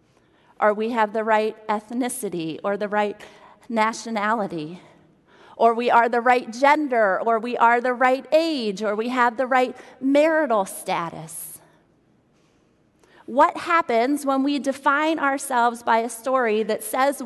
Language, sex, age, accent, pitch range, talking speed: English, female, 30-49, American, 215-275 Hz, 140 wpm